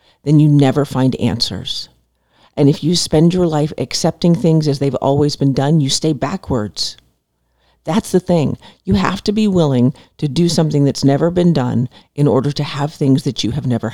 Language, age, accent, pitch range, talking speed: English, 50-69, American, 125-170 Hz, 195 wpm